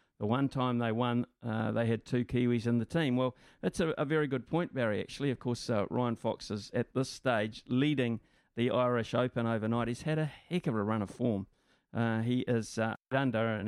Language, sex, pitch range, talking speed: English, male, 110-130 Hz, 225 wpm